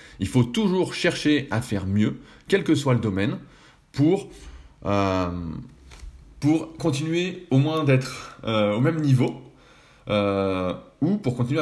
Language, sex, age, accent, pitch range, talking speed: French, male, 20-39, French, 105-140 Hz, 140 wpm